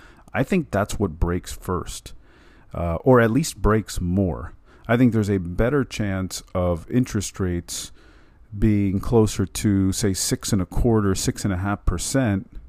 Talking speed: 160 wpm